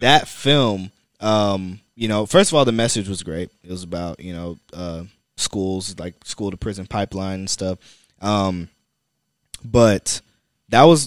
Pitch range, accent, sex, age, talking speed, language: 95-115 Hz, American, male, 20-39, 165 wpm, English